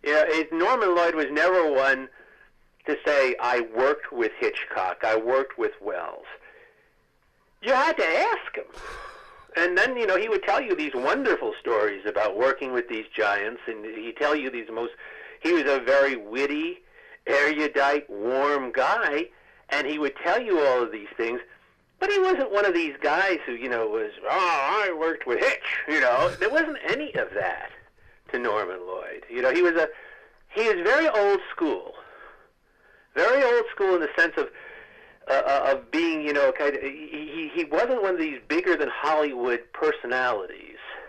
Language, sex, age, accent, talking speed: English, male, 50-69, American, 175 wpm